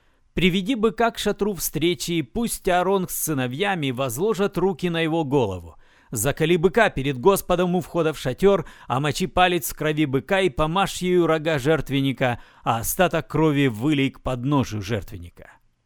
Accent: native